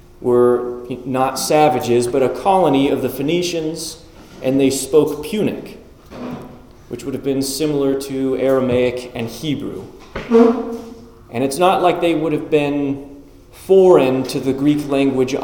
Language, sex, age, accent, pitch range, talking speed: English, male, 30-49, American, 115-150 Hz, 135 wpm